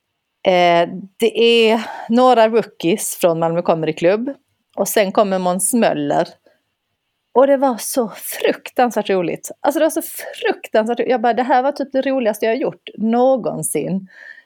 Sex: female